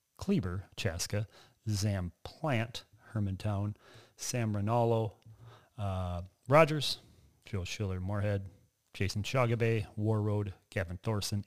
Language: English